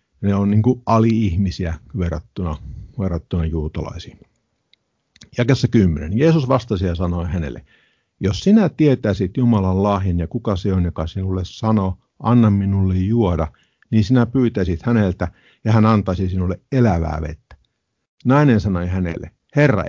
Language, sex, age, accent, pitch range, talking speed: Finnish, male, 50-69, native, 85-115 Hz, 130 wpm